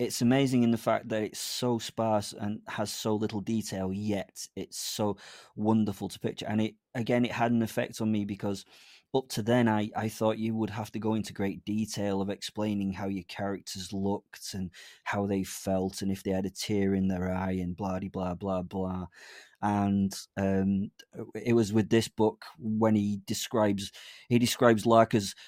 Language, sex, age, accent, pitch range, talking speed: English, male, 20-39, British, 100-115 Hz, 195 wpm